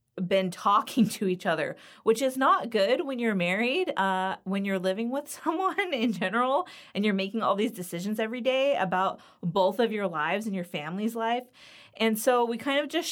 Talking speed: 195 wpm